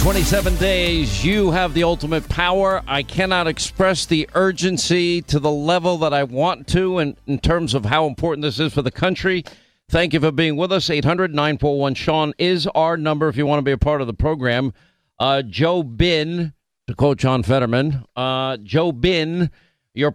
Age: 50-69